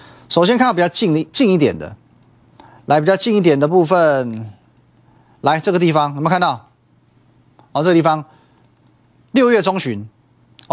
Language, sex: Chinese, male